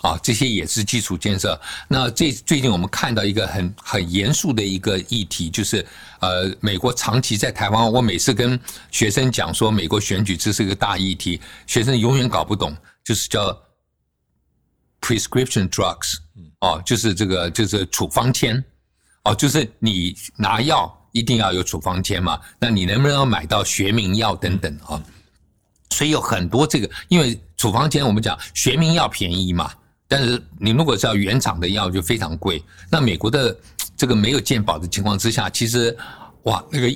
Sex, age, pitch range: male, 50-69, 95-125 Hz